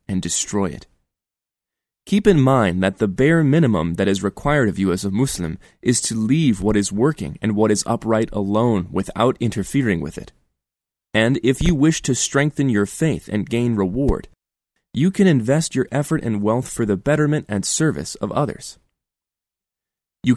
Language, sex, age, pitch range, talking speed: English, male, 20-39, 105-140 Hz, 175 wpm